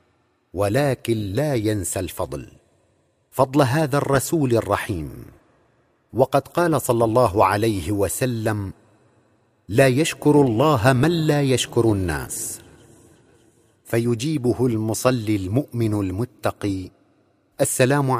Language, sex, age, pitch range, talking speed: Arabic, male, 50-69, 110-140 Hz, 85 wpm